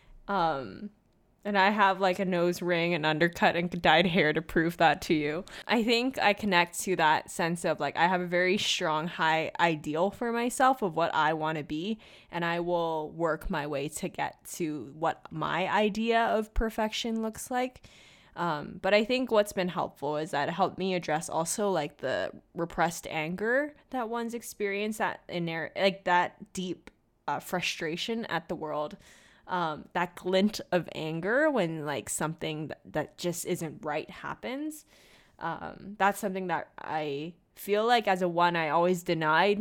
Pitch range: 160-205 Hz